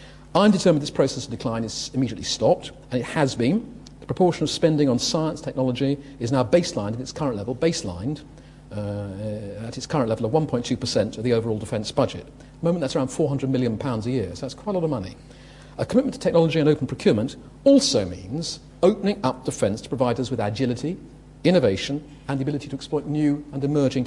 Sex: male